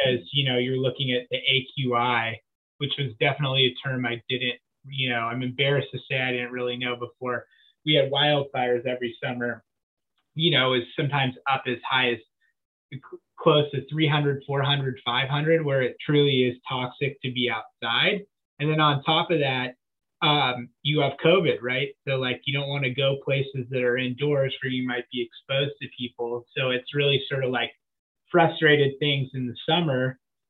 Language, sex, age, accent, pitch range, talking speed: English, male, 20-39, American, 125-140 Hz, 180 wpm